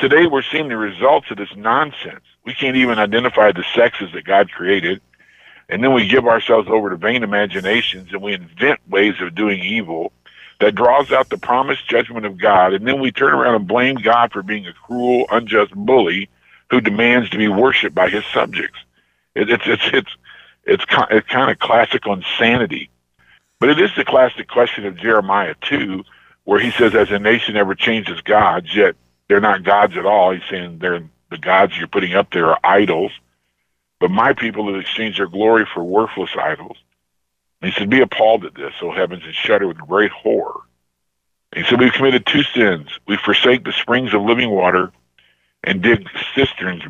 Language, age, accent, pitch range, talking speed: English, 50-69, American, 85-120 Hz, 190 wpm